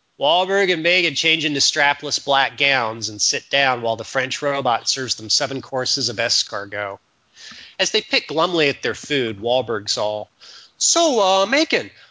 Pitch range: 130-200 Hz